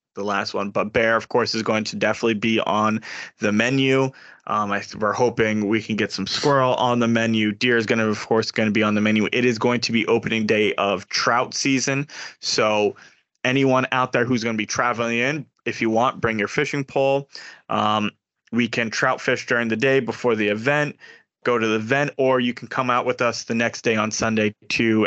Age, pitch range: 20-39, 110-125 Hz